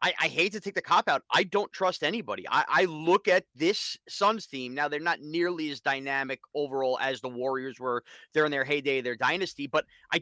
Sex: male